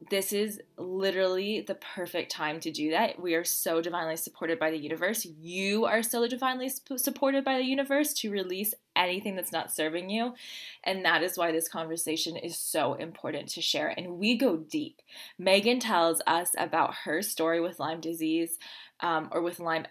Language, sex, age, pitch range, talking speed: English, female, 10-29, 170-220 Hz, 180 wpm